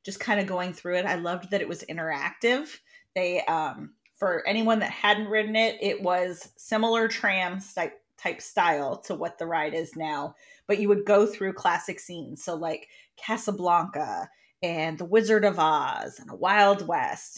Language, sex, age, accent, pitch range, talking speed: English, female, 30-49, American, 180-215 Hz, 175 wpm